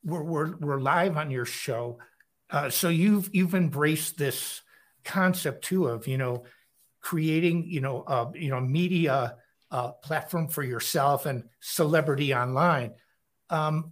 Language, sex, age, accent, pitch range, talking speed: English, male, 60-79, American, 135-175 Hz, 140 wpm